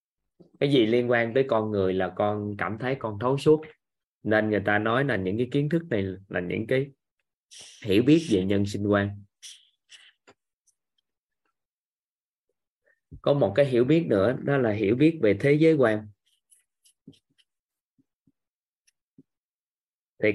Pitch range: 100-135 Hz